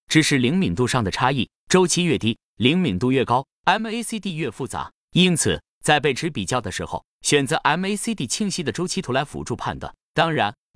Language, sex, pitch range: Chinese, male, 115-180 Hz